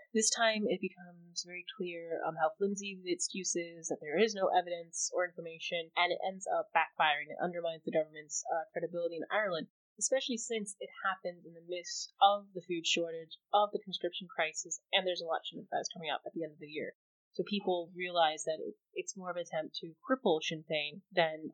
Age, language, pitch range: 20-39, English, 165-200 Hz